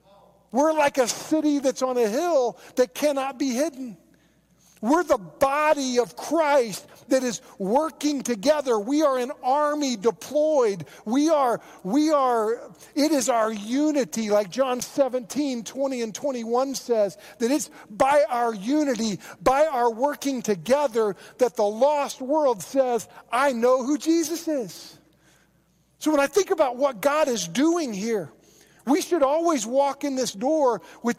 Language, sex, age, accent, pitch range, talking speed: English, male, 40-59, American, 200-285 Hz, 150 wpm